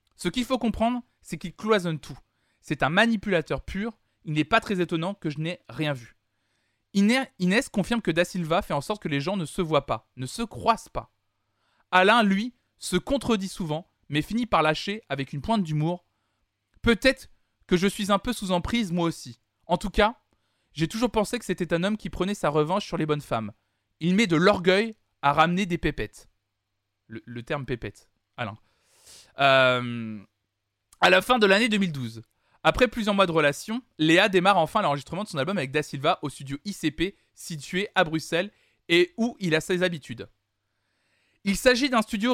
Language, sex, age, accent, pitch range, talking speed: French, male, 20-39, French, 130-200 Hz, 190 wpm